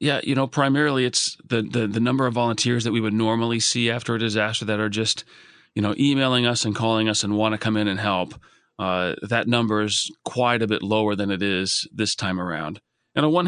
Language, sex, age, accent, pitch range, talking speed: English, male, 40-59, American, 105-120 Hz, 235 wpm